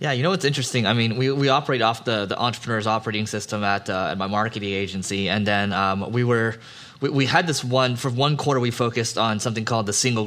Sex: male